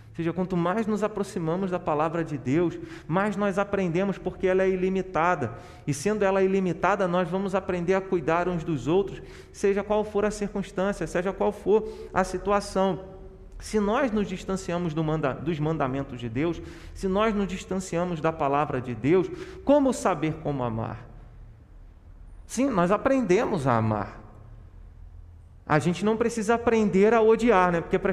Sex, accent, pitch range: male, Brazilian, 135-200 Hz